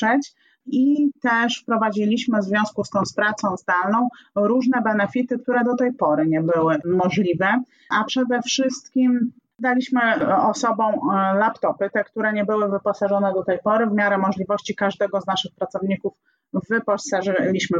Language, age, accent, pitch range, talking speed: Polish, 30-49, native, 205-235 Hz, 135 wpm